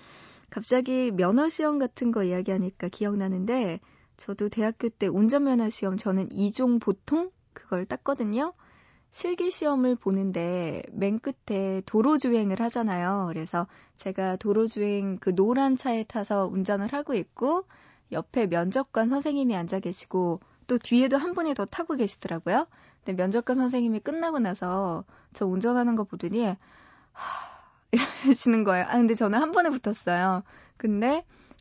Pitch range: 195-270 Hz